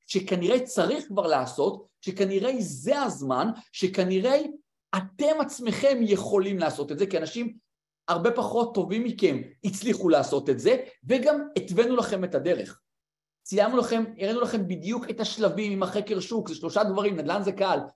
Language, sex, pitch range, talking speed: Hebrew, male, 185-230 Hz, 150 wpm